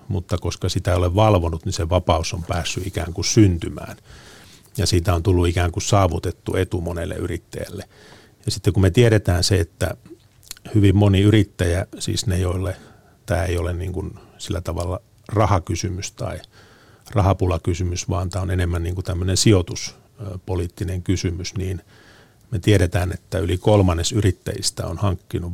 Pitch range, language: 90-105 Hz, Finnish